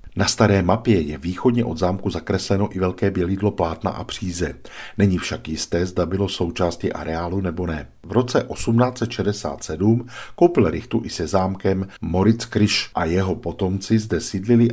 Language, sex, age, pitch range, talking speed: Czech, male, 50-69, 85-110 Hz, 155 wpm